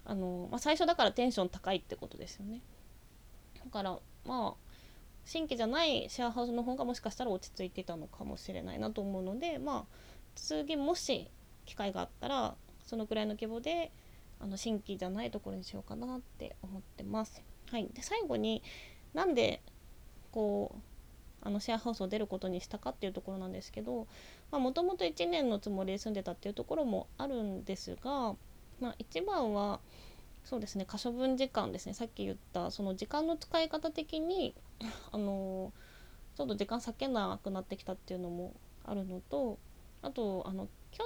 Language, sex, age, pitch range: Japanese, female, 20-39, 190-245 Hz